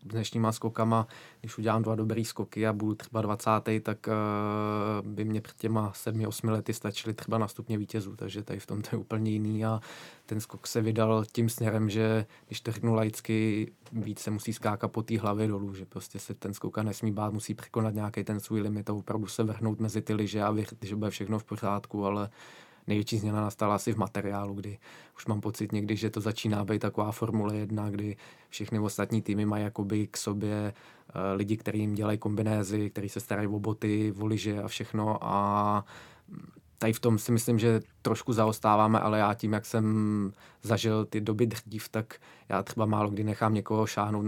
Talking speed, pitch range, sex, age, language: 195 wpm, 105-110 Hz, male, 20-39, Czech